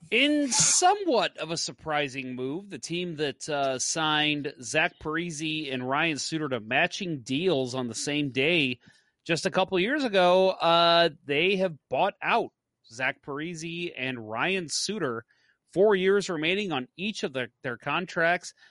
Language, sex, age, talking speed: English, male, 30-49, 150 wpm